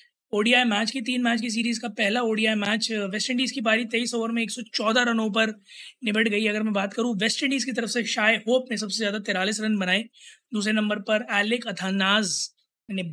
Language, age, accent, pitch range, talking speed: Hindi, 20-39, native, 205-240 Hz, 210 wpm